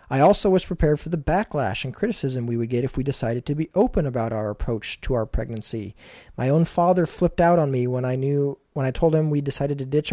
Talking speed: 250 wpm